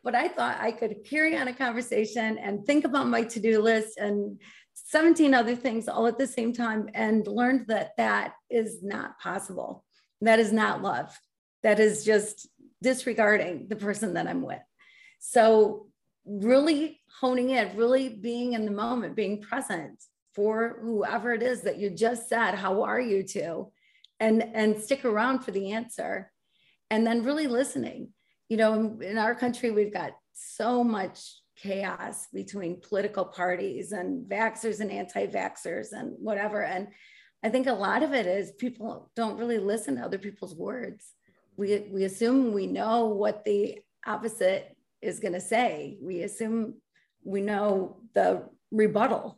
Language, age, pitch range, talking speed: English, 40-59, 205-245 Hz, 160 wpm